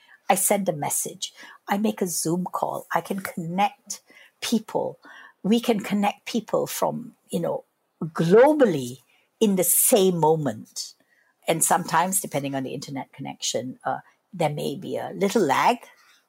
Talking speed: 145 wpm